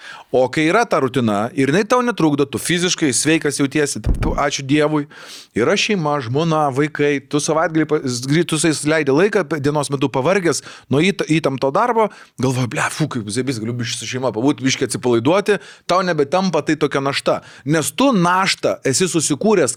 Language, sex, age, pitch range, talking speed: English, male, 30-49, 135-180 Hz, 155 wpm